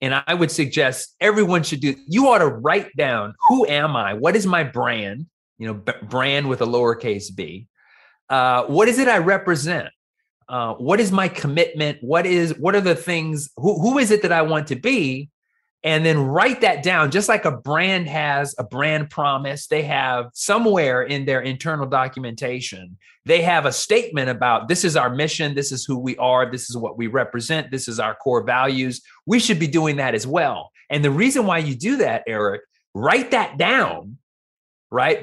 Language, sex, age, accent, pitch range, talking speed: English, male, 30-49, American, 130-185 Hz, 195 wpm